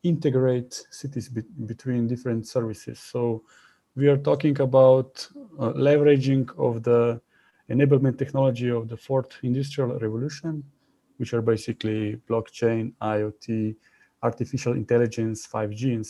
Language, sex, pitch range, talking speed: English, male, 115-145 Hz, 110 wpm